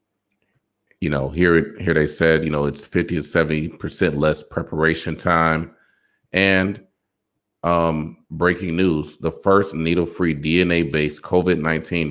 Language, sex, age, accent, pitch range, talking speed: English, male, 30-49, American, 80-95 Hz, 130 wpm